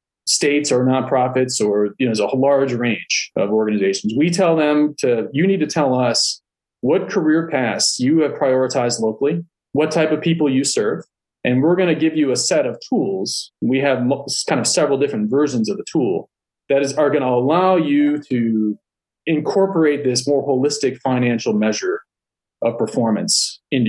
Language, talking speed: English, 180 wpm